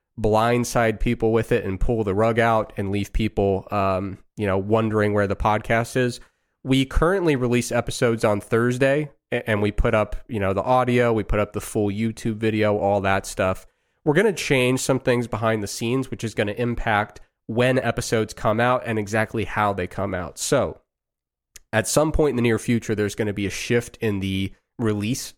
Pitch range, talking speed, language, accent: 105-125 Hz, 200 wpm, English, American